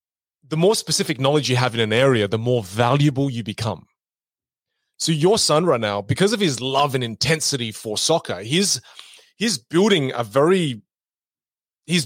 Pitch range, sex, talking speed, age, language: 120-165 Hz, male, 165 wpm, 30-49, English